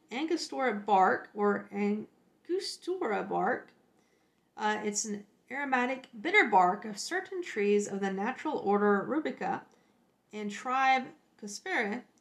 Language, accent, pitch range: English, American, 205-270 Hz